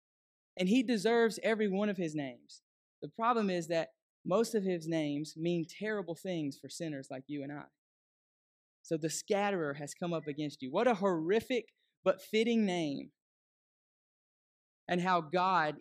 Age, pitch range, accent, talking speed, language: 20-39, 155-195 Hz, American, 160 wpm, English